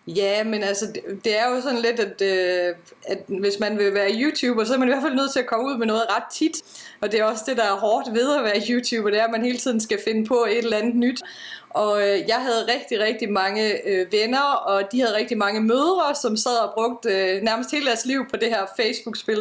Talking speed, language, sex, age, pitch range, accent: 245 wpm, Danish, female, 30-49, 210-255 Hz, native